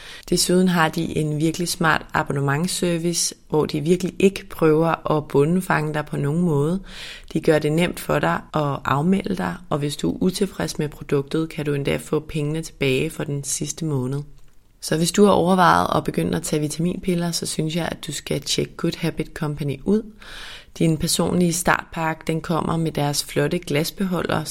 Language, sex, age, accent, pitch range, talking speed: Danish, female, 30-49, native, 145-175 Hz, 180 wpm